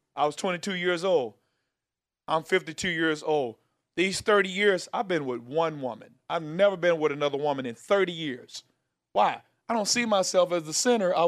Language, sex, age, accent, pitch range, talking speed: English, male, 40-59, American, 165-235 Hz, 185 wpm